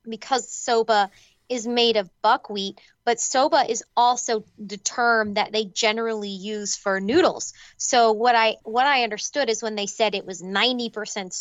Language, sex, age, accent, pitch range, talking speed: English, female, 20-39, American, 200-255 Hz, 165 wpm